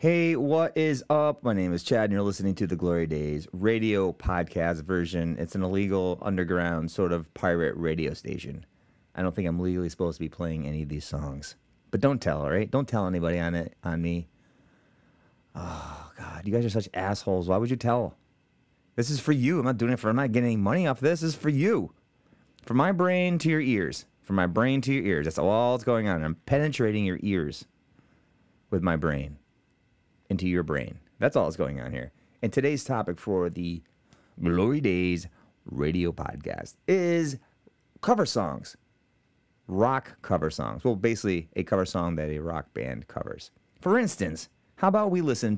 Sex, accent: male, American